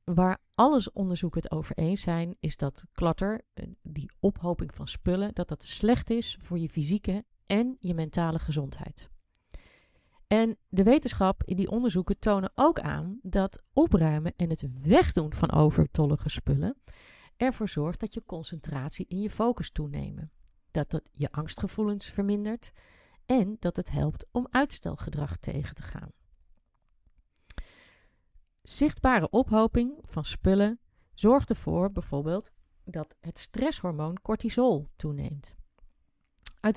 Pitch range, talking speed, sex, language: 160-220 Hz, 125 wpm, female, Dutch